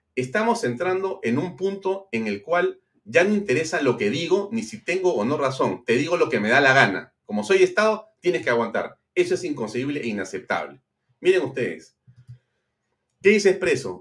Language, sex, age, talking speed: Spanish, male, 40-59, 190 wpm